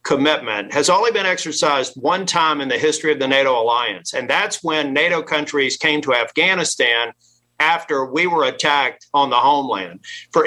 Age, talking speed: 50-69, 170 wpm